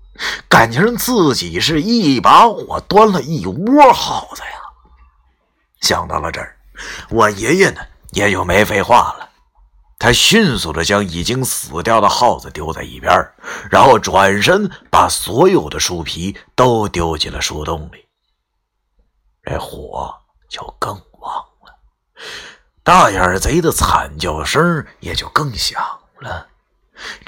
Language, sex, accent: Chinese, male, native